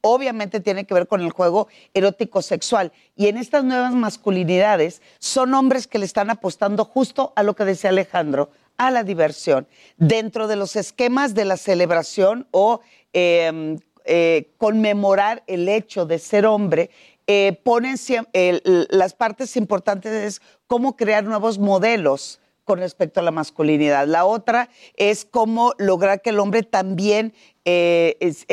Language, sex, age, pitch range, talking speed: Spanish, female, 40-59, 175-225 Hz, 150 wpm